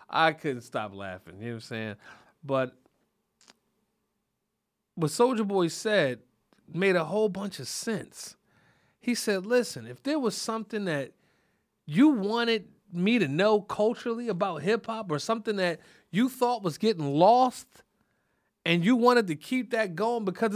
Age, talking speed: 30-49, 155 wpm